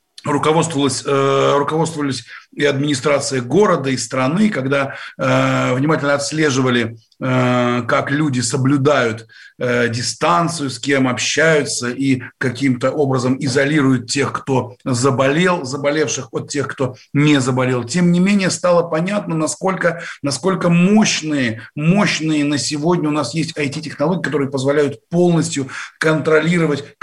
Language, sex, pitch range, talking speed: Russian, male, 135-175 Hz, 120 wpm